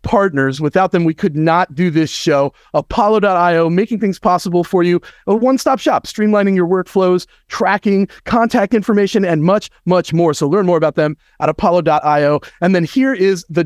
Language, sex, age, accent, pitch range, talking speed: English, male, 40-59, American, 150-205 Hz, 175 wpm